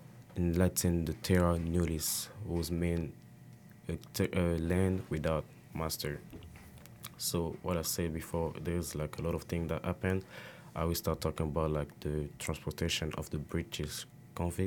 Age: 20-39